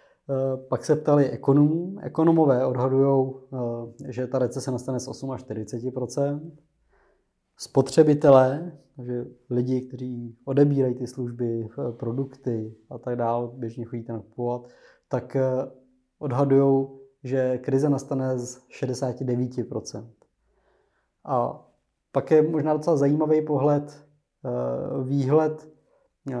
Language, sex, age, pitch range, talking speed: Czech, male, 20-39, 125-145 Hz, 95 wpm